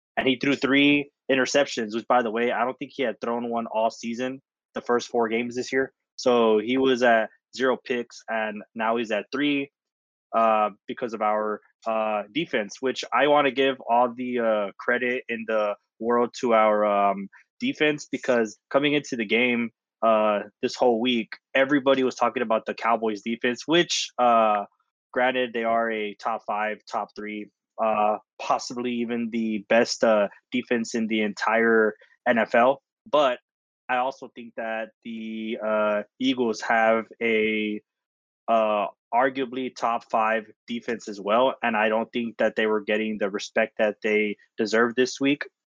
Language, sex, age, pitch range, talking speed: English, male, 20-39, 110-125 Hz, 165 wpm